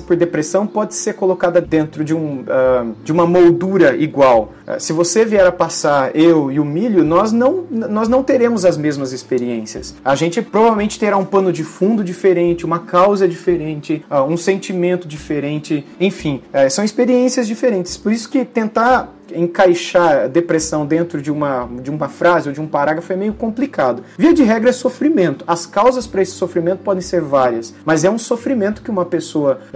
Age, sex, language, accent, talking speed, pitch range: 30-49, male, Portuguese, Brazilian, 170 wpm, 150-205 Hz